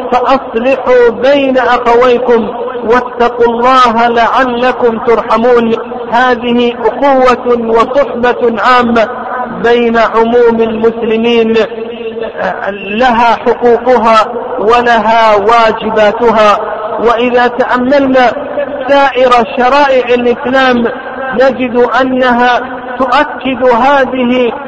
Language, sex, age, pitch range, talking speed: Arabic, male, 50-69, 235-260 Hz, 65 wpm